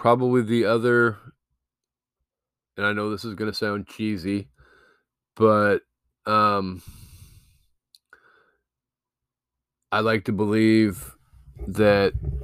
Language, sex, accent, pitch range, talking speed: English, male, American, 90-105 Hz, 90 wpm